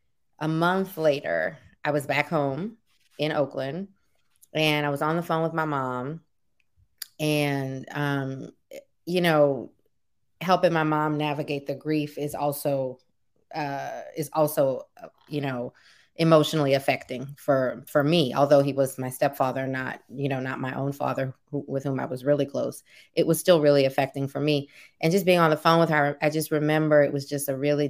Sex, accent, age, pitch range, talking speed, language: female, American, 20-39, 135-150 Hz, 175 wpm, English